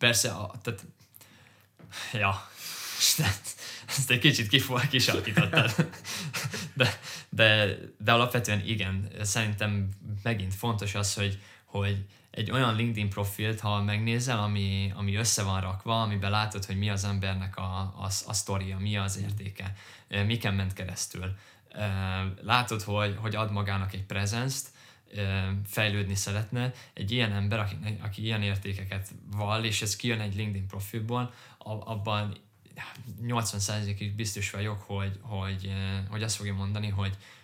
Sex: male